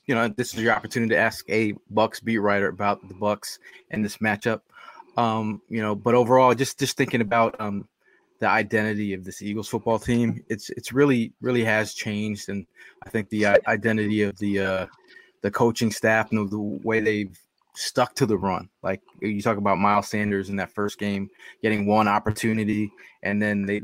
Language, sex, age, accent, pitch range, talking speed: English, male, 20-39, American, 105-115 Hz, 195 wpm